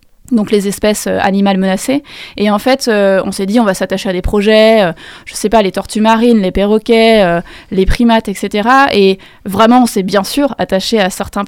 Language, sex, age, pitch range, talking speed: French, female, 20-39, 195-240 Hz, 215 wpm